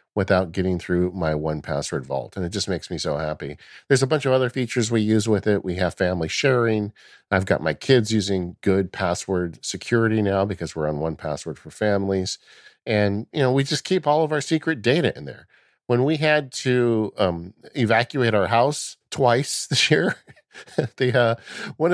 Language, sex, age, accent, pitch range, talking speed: English, male, 50-69, American, 95-135 Hz, 190 wpm